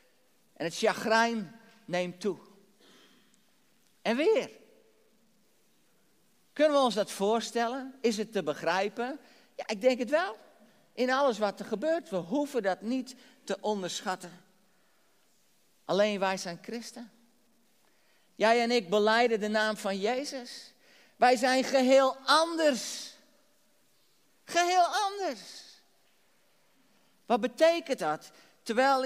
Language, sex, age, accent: Dutch, male, 50-69, Dutch